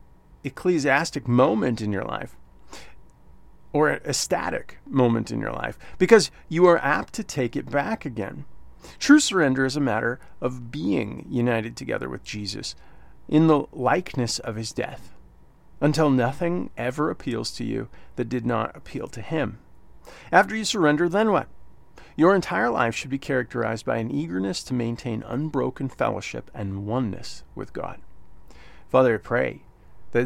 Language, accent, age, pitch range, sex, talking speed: English, American, 40-59, 100-130 Hz, male, 150 wpm